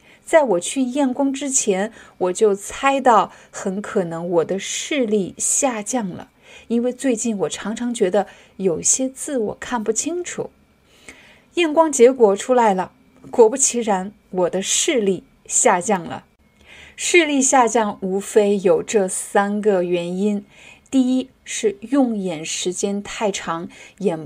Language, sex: Chinese, female